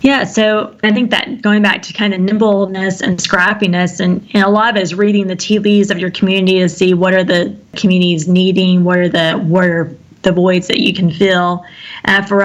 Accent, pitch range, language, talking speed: American, 175-200 Hz, English, 220 wpm